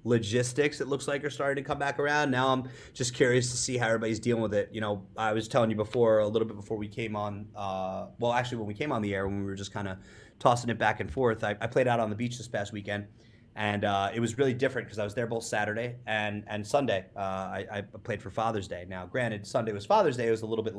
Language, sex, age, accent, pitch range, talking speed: English, male, 30-49, American, 110-140 Hz, 285 wpm